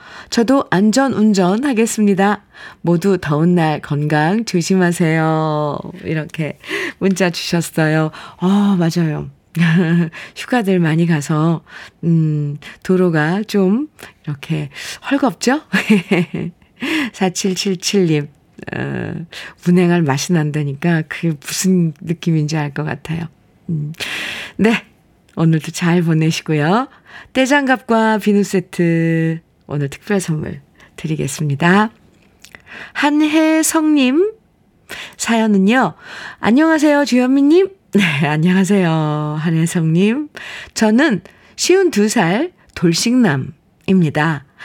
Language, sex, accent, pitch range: Korean, female, native, 160-220 Hz